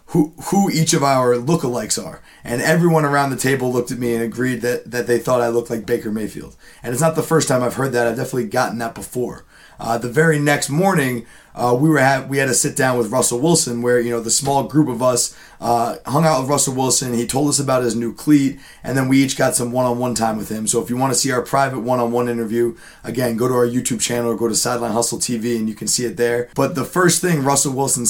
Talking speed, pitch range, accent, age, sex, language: 255 wpm, 120-140 Hz, American, 30-49, male, English